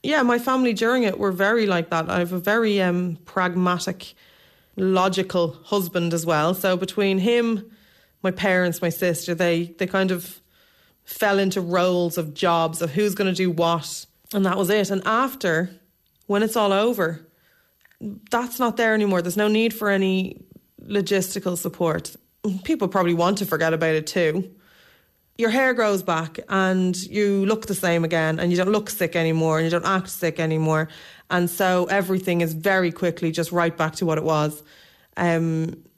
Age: 20-39